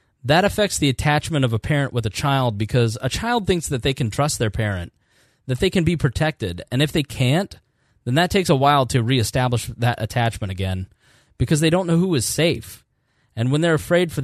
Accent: American